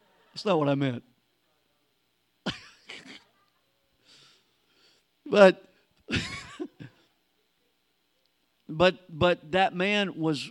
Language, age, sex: English, 50-69, male